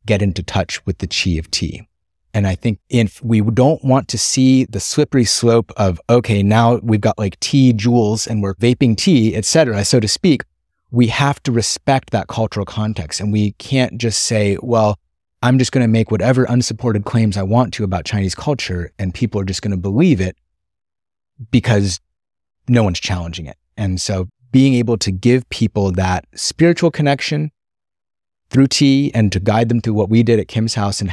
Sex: male